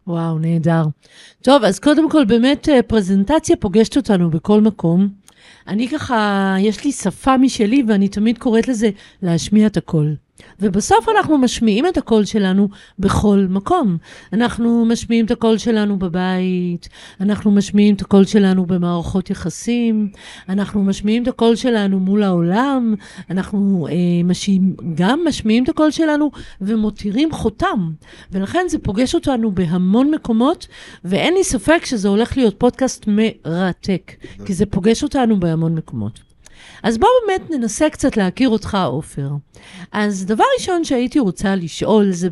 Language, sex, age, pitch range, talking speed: Hebrew, female, 50-69, 180-255 Hz, 140 wpm